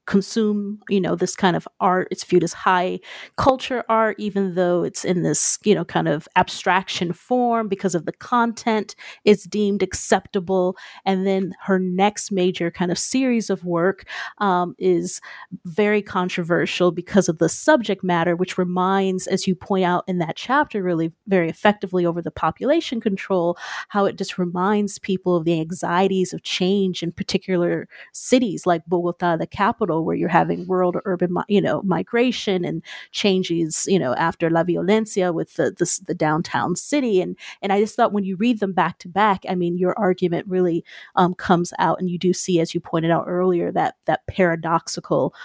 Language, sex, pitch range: English, female, 180-205 Hz